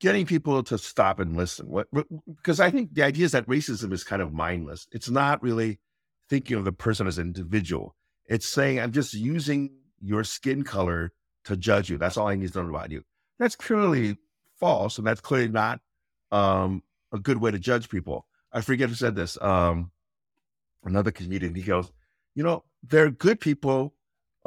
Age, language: 50-69, English